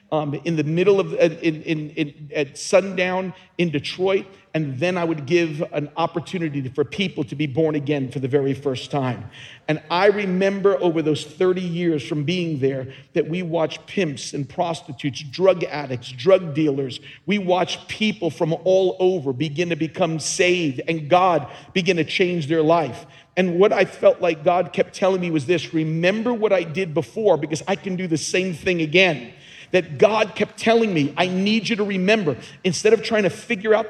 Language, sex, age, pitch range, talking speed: English, male, 50-69, 155-210 Hz, 190 wpm